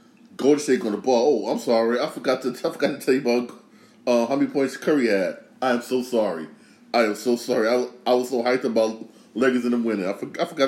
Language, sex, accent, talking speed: English, male, American, 260 wpm